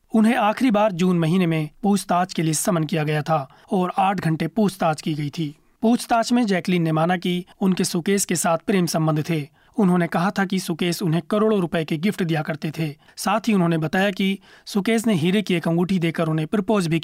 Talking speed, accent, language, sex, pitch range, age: 215 wpm, native, Hindi, male, 165-205 Hz, 30-49